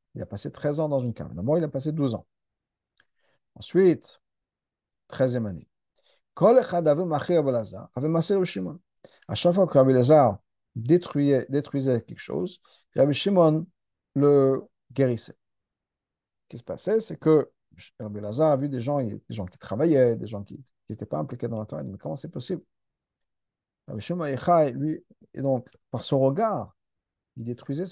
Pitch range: 120-155 Hz